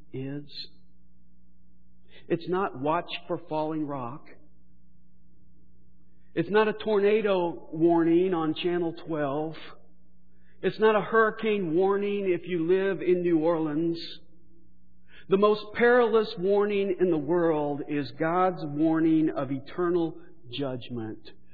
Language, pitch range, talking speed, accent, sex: English, 145-190 Hz, 110 wpm, American, male